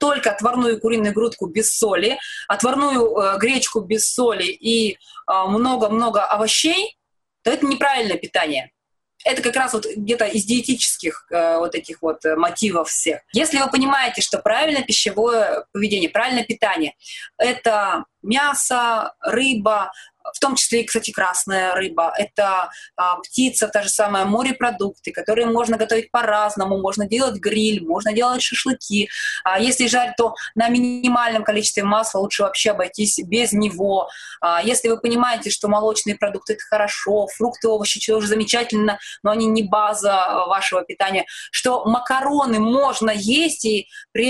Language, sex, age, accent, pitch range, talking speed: Russian, female, 20-39, native, 205-245 Hz, 140 wpm